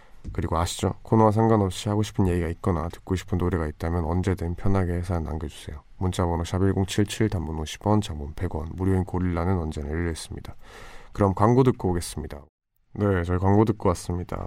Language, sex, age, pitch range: Korean, male, 20-39, 90-110 Hz